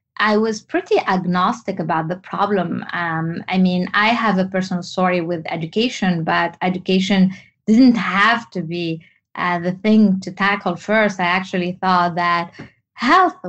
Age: 20-39